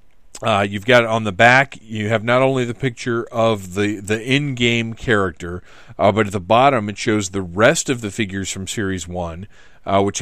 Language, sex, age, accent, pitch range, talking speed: English, male, 40-59, American, 100-120 Hz, 195 wpm